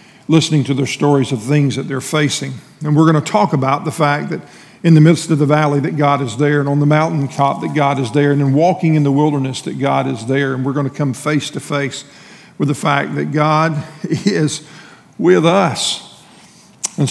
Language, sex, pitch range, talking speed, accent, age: English, male, 145-170 Hz, 225 wpm, American, 50-69